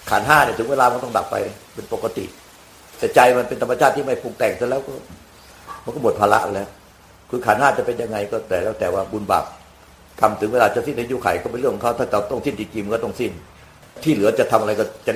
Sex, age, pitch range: male, 60-79, 100-140 Hz